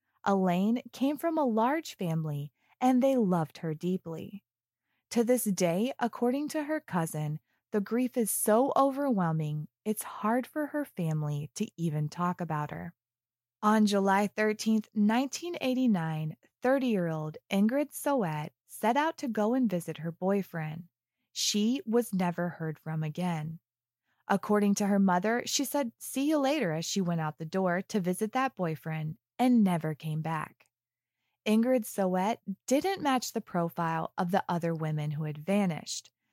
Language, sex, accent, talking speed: English, female, American, 150 wpm